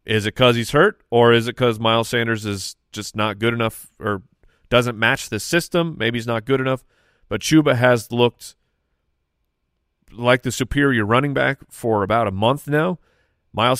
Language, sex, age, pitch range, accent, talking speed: English, male, 30-49, 105-125 Hz, American, 180 wpm